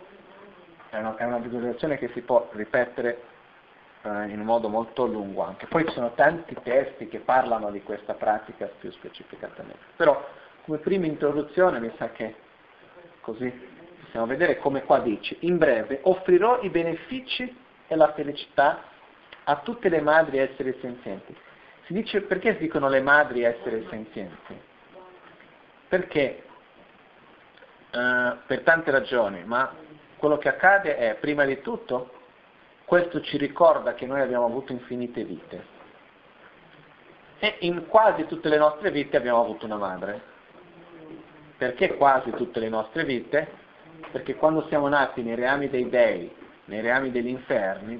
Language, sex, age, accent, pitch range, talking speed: Italian, male, 50-69, native, 115-155 Hz, 140 wpm